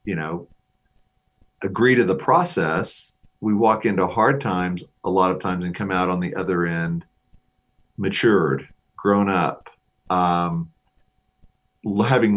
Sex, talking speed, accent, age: male, 130 wpm, American, 40-59